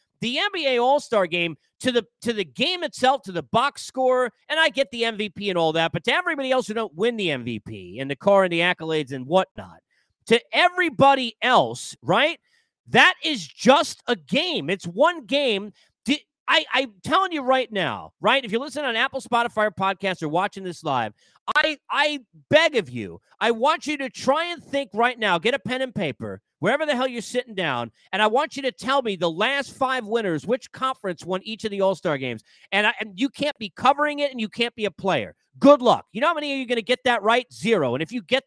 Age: 40-59